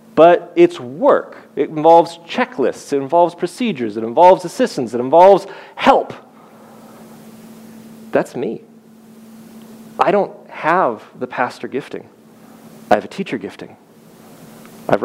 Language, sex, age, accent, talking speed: English, male, 30-49, American, 115 wpm